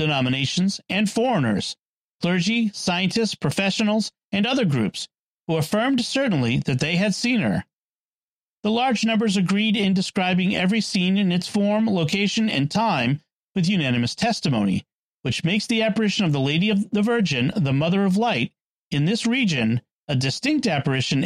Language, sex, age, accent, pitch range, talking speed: English, male, 40-59, American, 155-215 Hz, 150 wpm